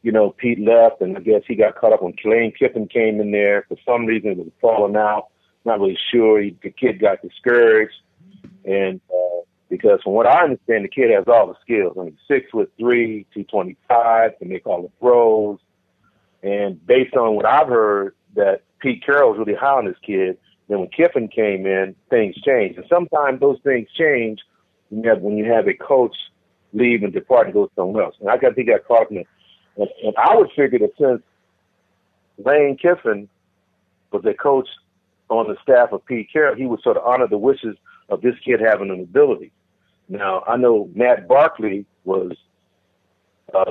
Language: English